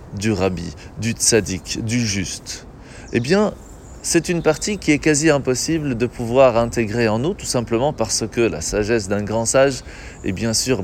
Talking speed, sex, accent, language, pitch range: 175 wpm, male, French, French, 110-165 Hz